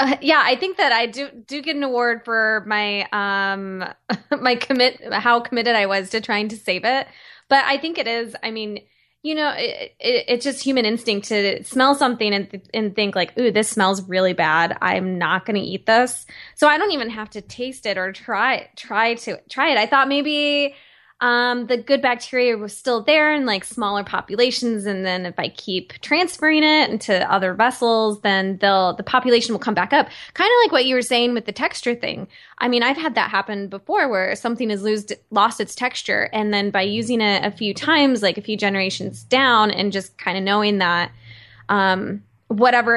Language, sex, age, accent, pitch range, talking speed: English, female, 10-29, American, 195-250 Hz, 205 wpm